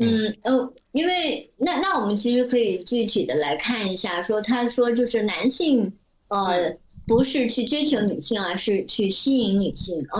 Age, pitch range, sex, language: 30-49, 195-245 Hz, male, Chinese